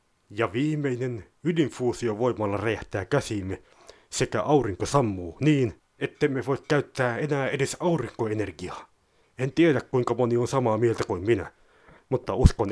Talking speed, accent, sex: 130 wpm, native, male